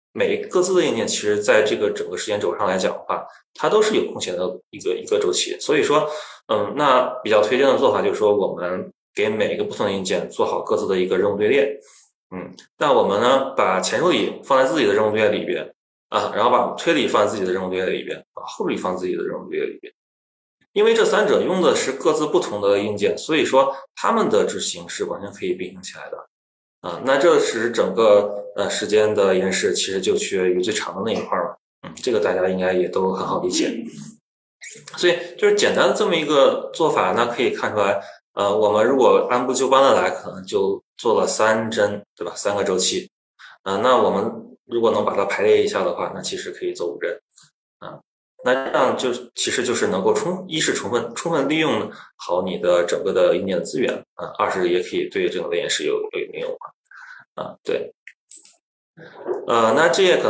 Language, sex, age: Chinese, male, 20-39